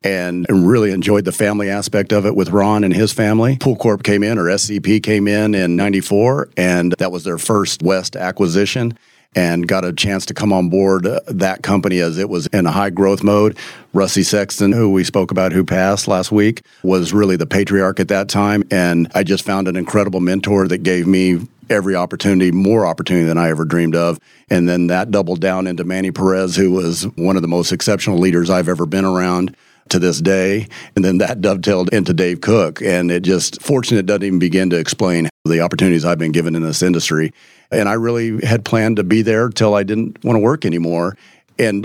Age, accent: 40-59, American